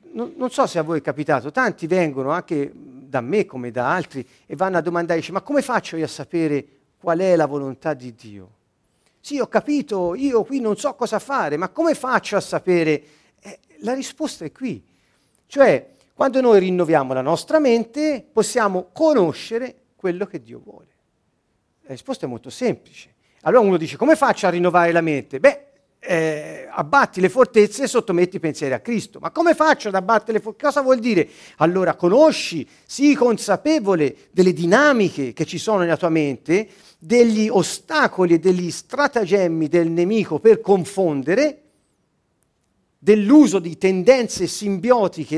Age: 50-69